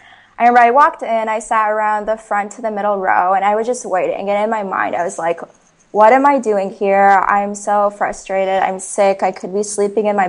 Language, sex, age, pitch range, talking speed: English, female, 20-39, 195-225 Hz, 240 wpm